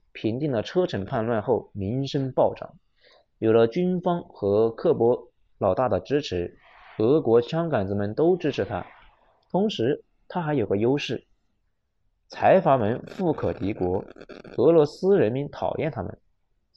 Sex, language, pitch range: male, Chinese, 105-170 Hz